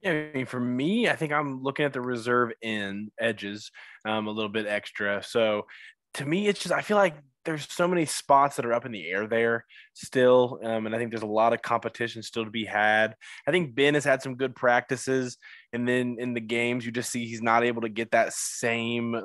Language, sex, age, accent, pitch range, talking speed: English, male, 20-39, American, 110-130 Hz, 230 wpm